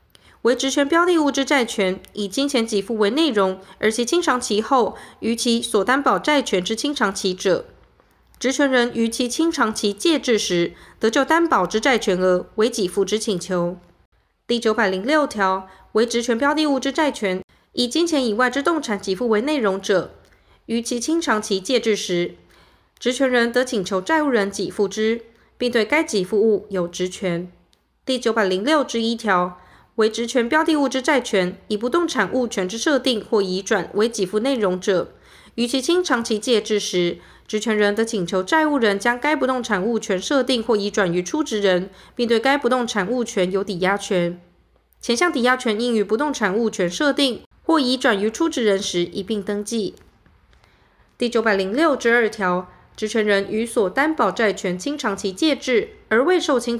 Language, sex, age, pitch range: Chinese, female, 20-39, 200-260 Hz